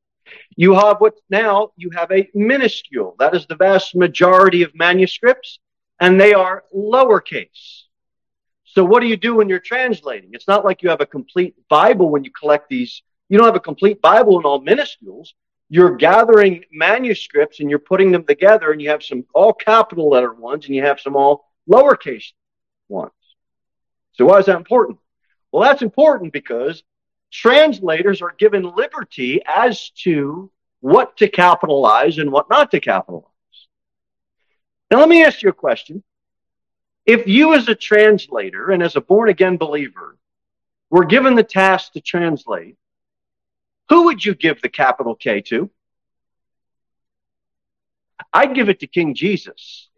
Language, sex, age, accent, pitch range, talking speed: English, male, 40-59, American, 170-220 Hz, 155 wpm